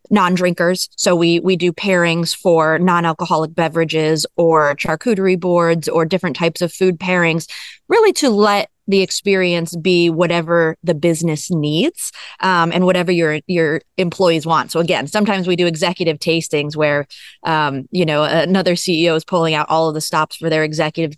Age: 20-39